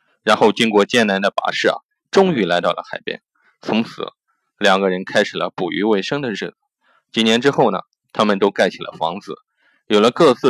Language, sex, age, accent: Chinese, male, 20-39, native